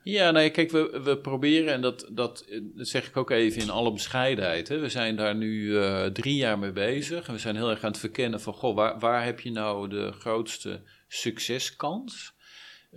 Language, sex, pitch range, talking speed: Dutch, male, 100-125 Hz, 200 wpm